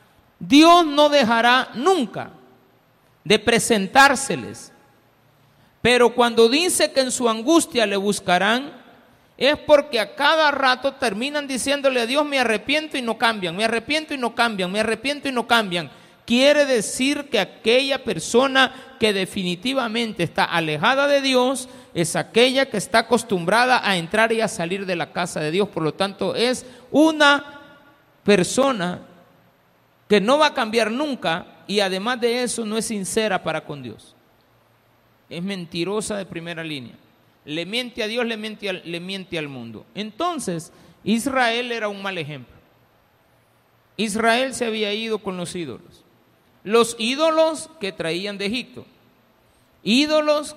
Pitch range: 185-260 Hz